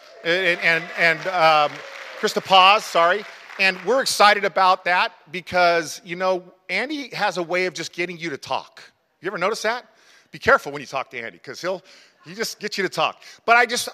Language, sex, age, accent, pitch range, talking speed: English, male, 40-59, American, 160-205 Hz, 200 wpm